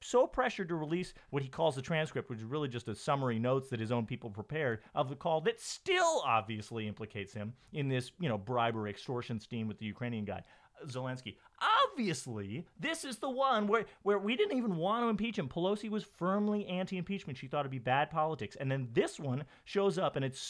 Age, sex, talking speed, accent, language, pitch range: 30-49, male, 215 wpm, American, English, 110-170 Hz